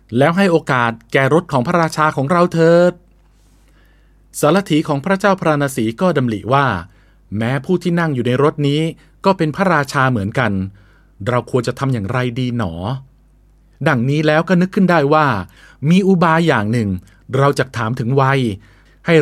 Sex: male